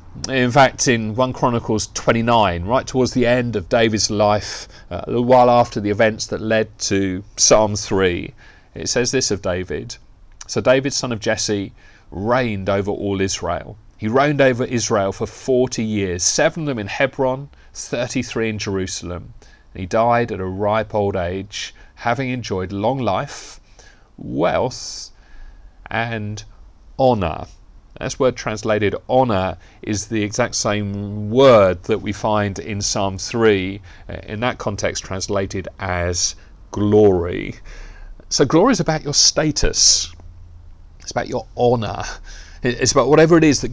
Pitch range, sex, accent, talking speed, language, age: 95-125 Hz, male, British, 145 wpm, English, 30-49